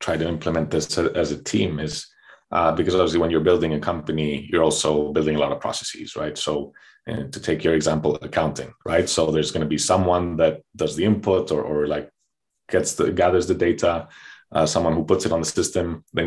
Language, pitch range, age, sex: English, 75-90 Hz, 30-49, male